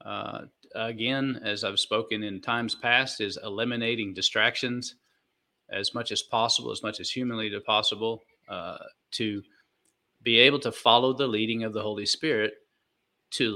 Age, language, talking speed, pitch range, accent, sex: 40-59, English, 145 wpm, 105-130 Hz, American, male